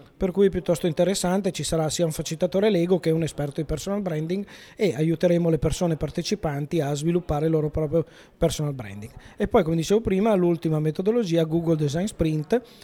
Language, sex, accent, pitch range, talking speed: Italian, male, native, 155-185 Hz, 180 wpm